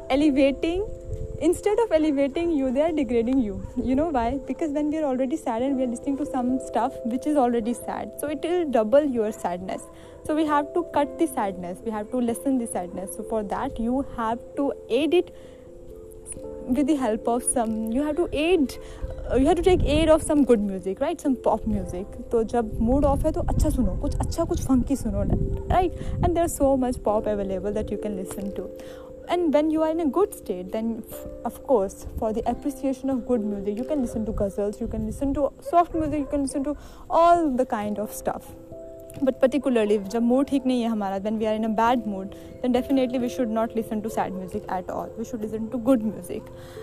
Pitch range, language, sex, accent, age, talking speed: 225-300 Hz, Hindi, female, native, 20-39, 220 wpm